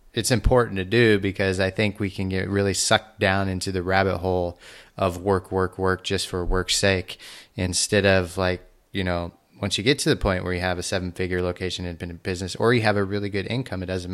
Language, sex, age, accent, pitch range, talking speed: English, male, 30-49, American, 90-105 Hz, 230 wpm